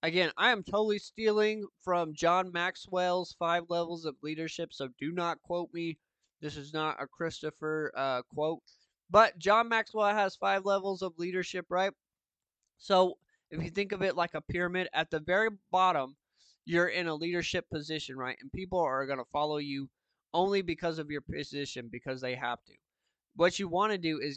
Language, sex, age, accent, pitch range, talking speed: English, male, 20-39, American, 135-175 Hz, 180 wpm